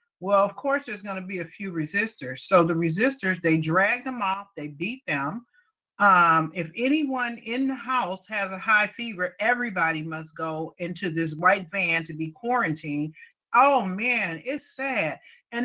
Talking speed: 175 wpm